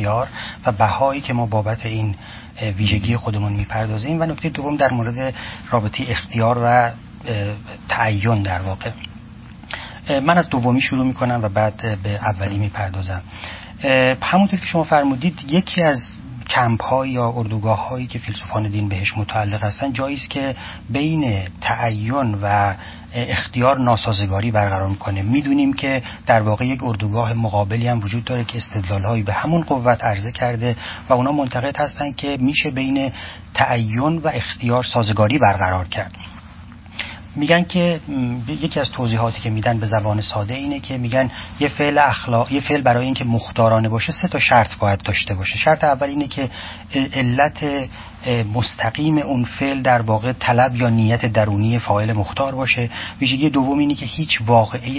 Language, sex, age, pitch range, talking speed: Persian, male, 40-59, 105-135 Hz, 155 wpm